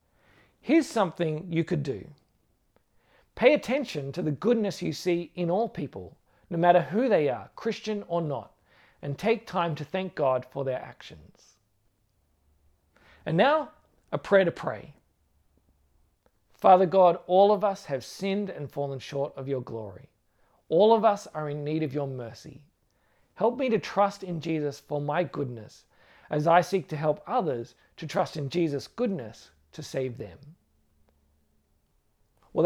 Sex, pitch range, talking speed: male, 140-195 Hz, 155 wpm